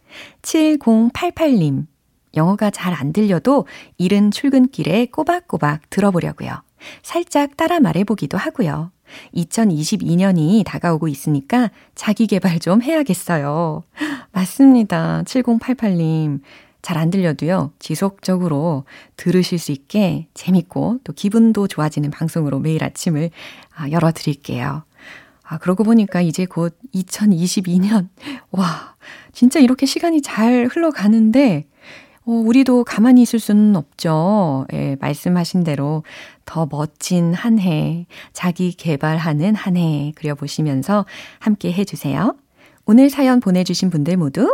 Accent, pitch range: native, 155-235 Hz